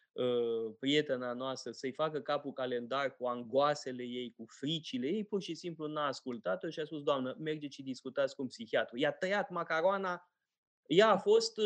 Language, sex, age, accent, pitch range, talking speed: Romanian, male, 20-39, native, 145-200 Hz, 165 wpm